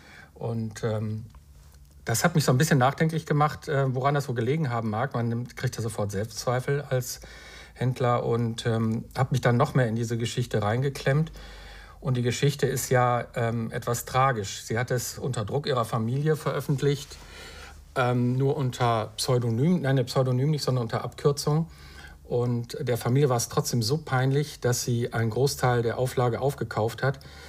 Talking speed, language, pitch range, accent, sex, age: 170 wpm, German, 115-135 Hz, German, male, 50-69